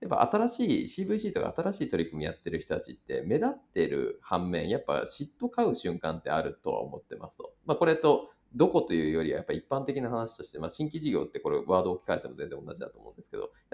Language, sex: Japanese, male